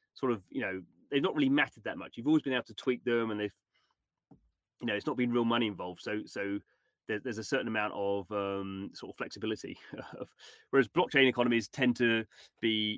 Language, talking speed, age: English, 210 wpm, 30-49